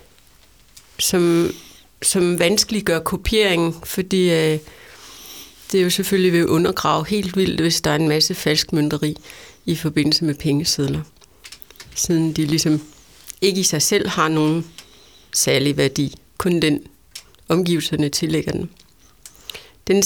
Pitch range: 160-195 Hz